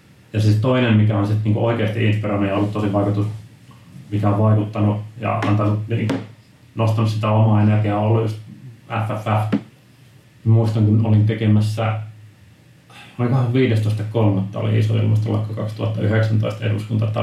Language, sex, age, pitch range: Finnish, male, 30-49, 105-115 Hz